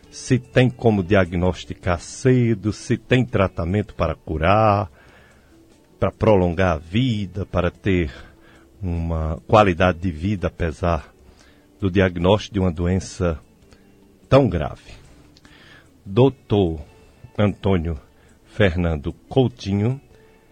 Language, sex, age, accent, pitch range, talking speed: Portuguese, male, 50-69, Brazilian, 90-115 Hz, 95 wpm